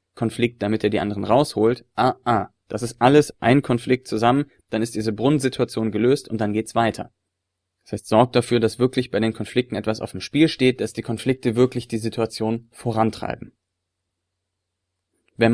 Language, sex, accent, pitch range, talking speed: German, male, German, 105-120 Hz, 180 wpm